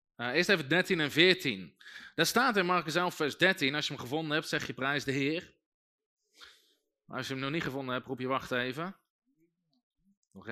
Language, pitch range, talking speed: Dutch, 170-220 Hz, 205 wpm